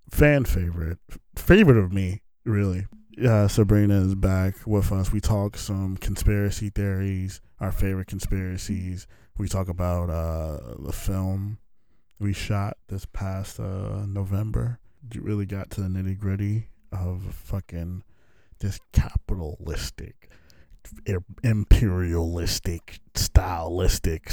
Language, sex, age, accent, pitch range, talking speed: English, male, 20-39, American, 90-125 Hz, 110 wpm